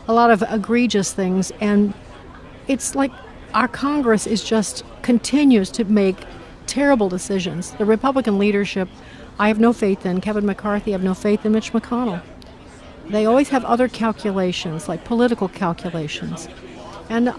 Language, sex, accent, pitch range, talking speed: English, female, American, 195-230 Hz, 150 wpm